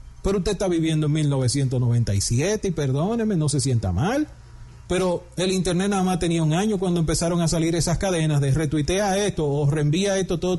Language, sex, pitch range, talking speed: Spanish, male, 120-165 Hz, 195 wpm